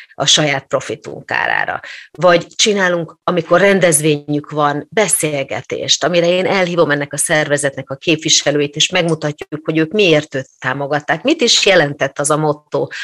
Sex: female